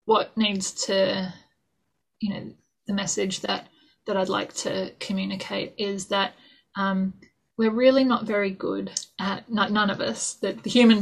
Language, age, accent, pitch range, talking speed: English, 20-39, Australian, 195-240 Hz, 160 wpm